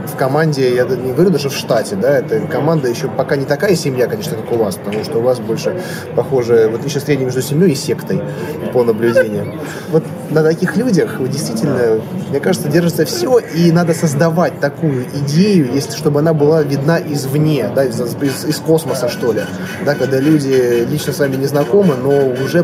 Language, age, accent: Russian, 20-39, native